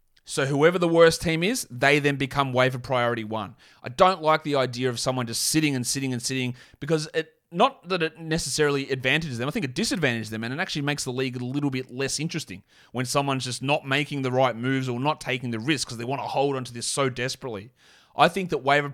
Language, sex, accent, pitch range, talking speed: English, male, Australian, 130-160 Hz, 240 wpm